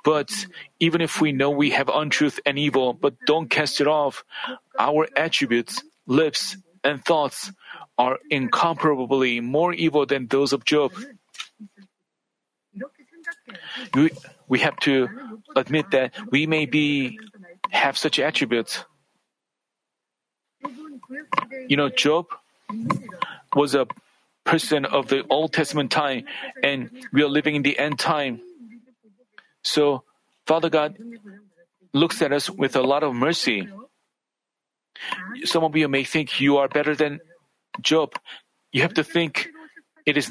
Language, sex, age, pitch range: Korean, male, 40-59, 145-205 Hz